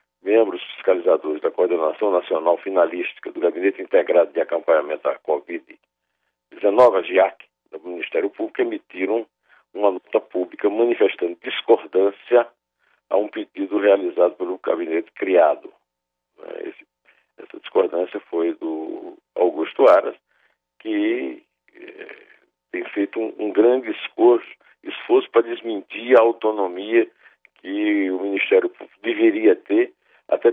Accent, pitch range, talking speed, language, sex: Brazilian, 320-420 Hz, 105 wpm, Portuguese, male